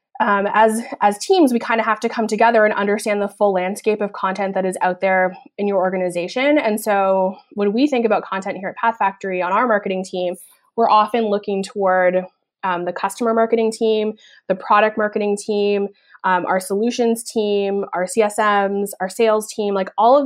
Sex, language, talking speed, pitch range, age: female, English, 190 wpm, 185-220 Hz, 20-39